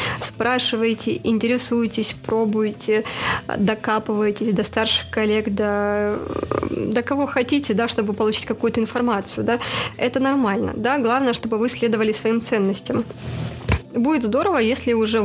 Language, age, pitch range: Russian, 20-39, 210-240 Hz